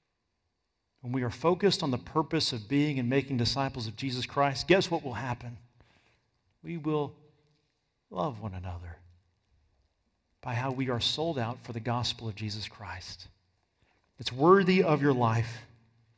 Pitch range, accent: 110-170 Hz, American